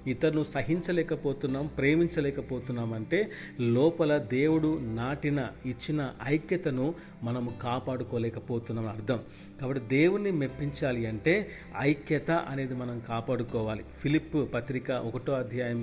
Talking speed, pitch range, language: 95 wpm, 125-160 Hz, Telugu